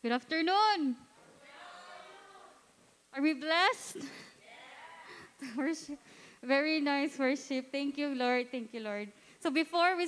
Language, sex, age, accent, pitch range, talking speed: English, female, 20-39, Filipino, 245-315 Hz, 100 wpm